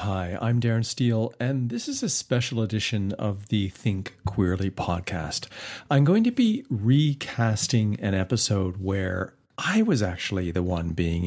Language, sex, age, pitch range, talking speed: English, male, 50-69, 95-130 Hz, 155 wpm